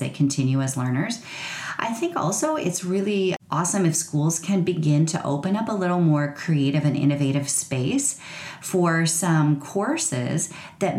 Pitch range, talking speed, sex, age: 140-175 Hz, 155 wpm, female, 30-49